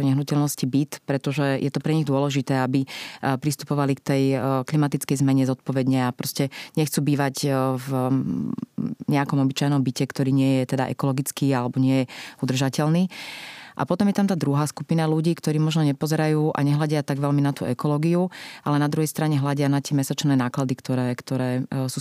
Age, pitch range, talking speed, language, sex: 30-49, 135-150 Hz, 170 wpm, Slovak, female